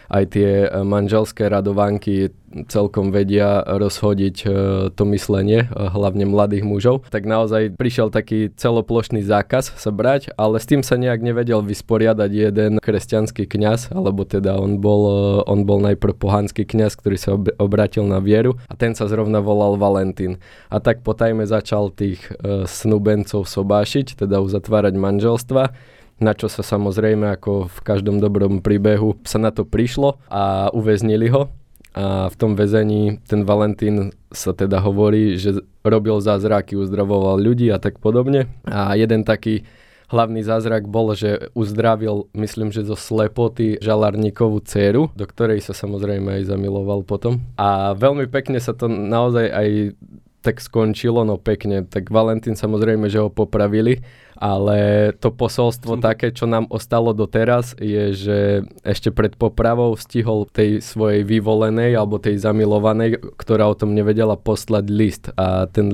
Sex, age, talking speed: male, 20-39, 145 wpm